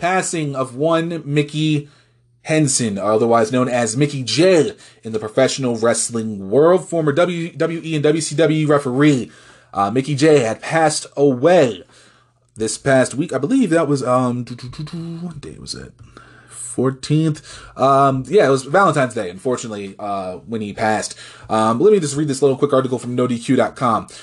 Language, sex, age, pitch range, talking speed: English, male, 20-39, 120-165 Hz, 155 wpm